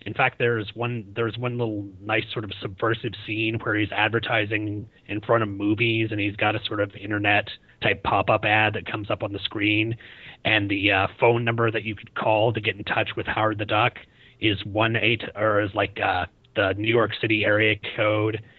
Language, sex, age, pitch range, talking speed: English, male, 30-49, 105-115 Hz, 210 wpm